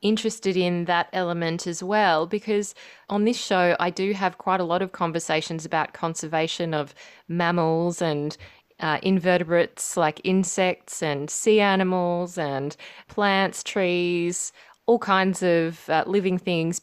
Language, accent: English, Australian